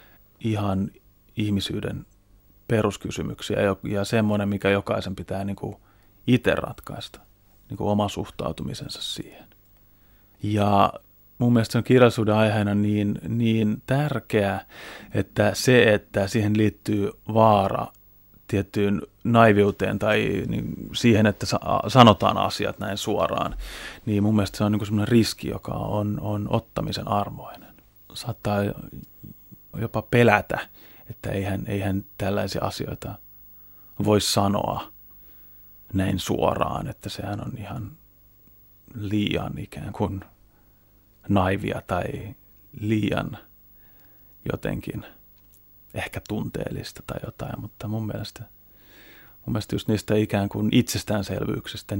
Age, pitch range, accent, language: 30-49, 100-110 Hz, native, Finnish